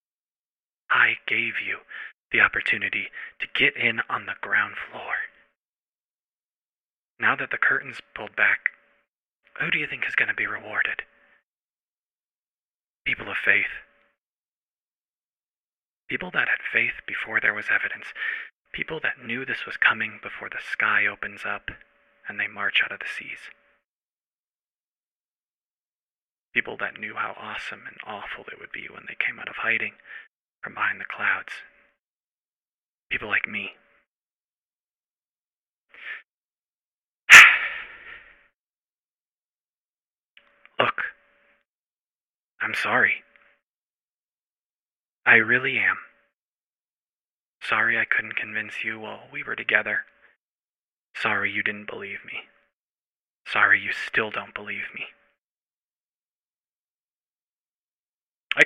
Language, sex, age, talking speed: English, male, 30-49, 110 wpm